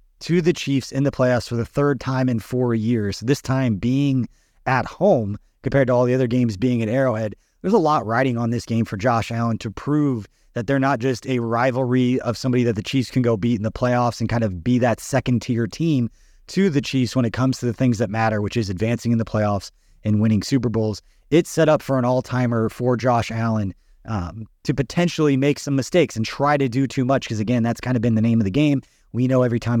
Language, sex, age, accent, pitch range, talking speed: English, male, 30-49, American, 115-135 Hz, 245 wpm